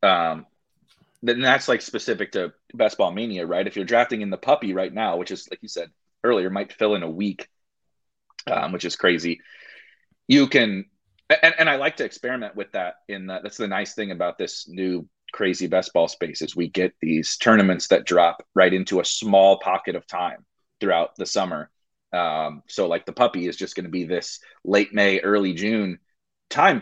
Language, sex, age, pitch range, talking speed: English, male, 30-49, 95-125 Hz, 200 wpm